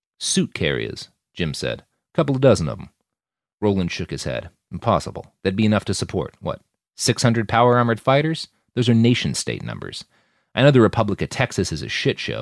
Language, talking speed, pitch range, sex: English, 180 wpm, 100-170 Hz, male